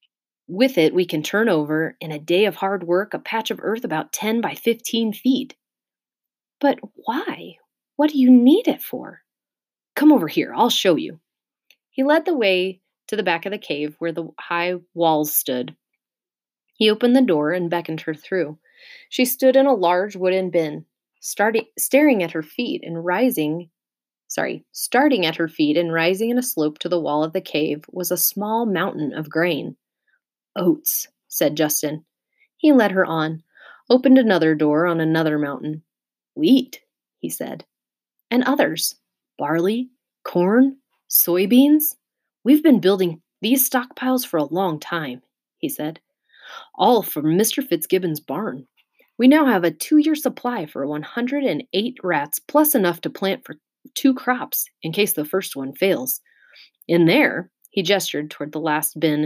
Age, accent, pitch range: 30-49, American, 160-255 Hz